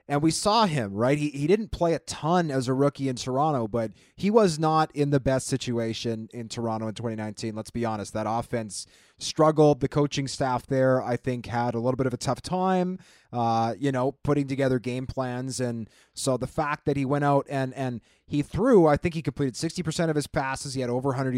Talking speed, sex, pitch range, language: 220 wpm, male, 120-150 Hz, English